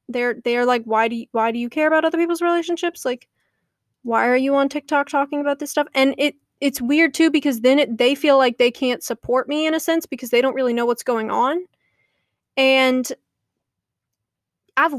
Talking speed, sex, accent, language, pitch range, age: 205 wpm, female, American, English, 245-300 Hz, 20-39